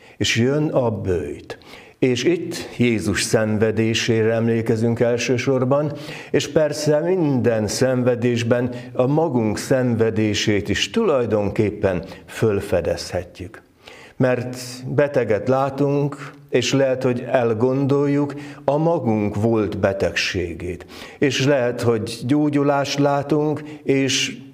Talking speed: 90 wpm